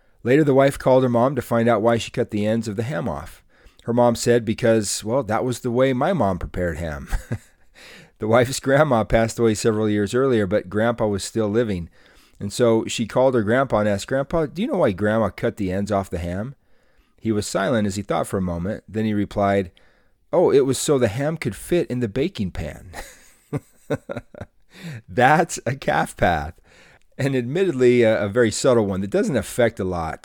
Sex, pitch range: male, 100-125 Hz